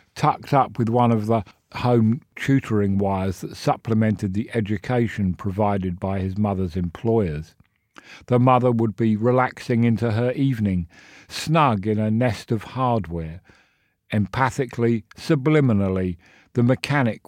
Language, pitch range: English, 100-125 Hz